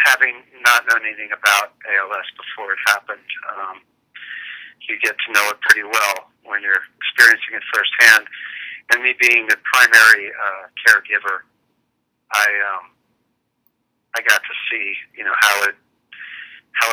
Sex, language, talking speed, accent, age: male, English, 140 wpm, American, 40-59